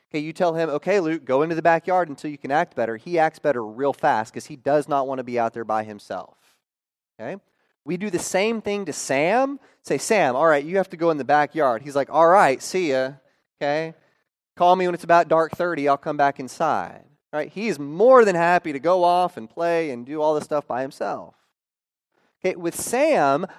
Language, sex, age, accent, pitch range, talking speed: English, male, 30-49, American, 135-175 Hz, 225 wpm